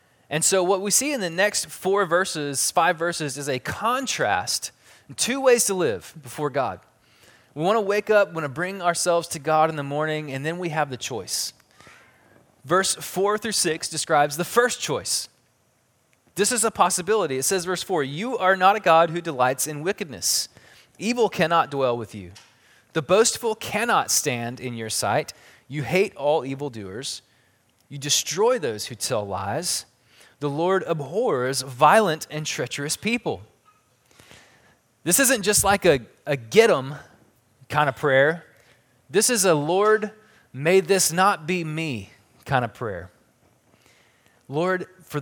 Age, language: 20-39, English